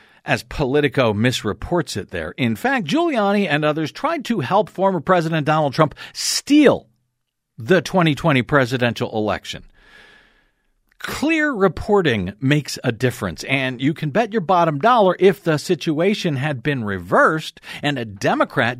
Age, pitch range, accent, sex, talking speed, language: 50-69, 120-165 Hz, American, male, 135 wpm, English